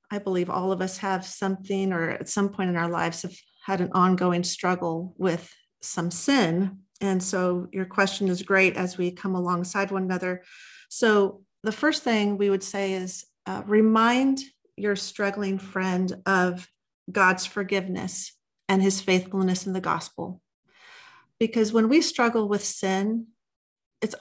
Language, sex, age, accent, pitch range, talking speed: English, female, 40-59, American, 180-200 Hz, 155 wpm